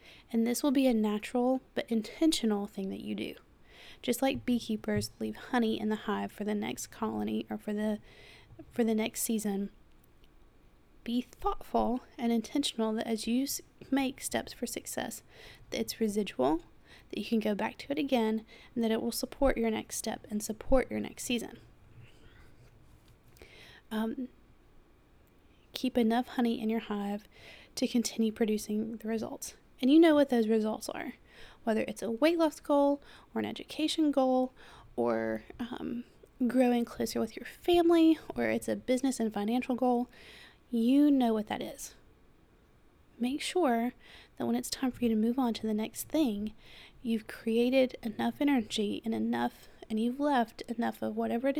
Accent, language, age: American, English, 20-39